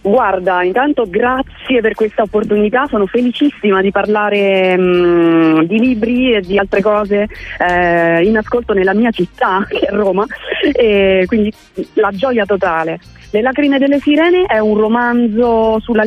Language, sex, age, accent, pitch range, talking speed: Italian, female, 30-49, native, 185-240 Hz, 145 wpm